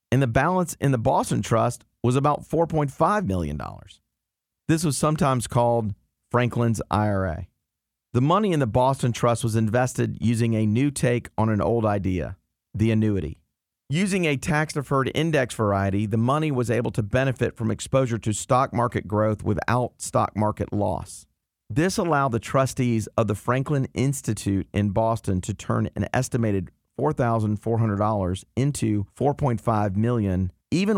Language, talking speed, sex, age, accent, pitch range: English, 145 wpm, male, 40-59, American, 105-135 Hz